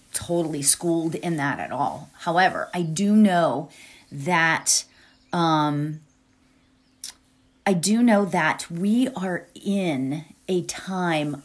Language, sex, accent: English, female, American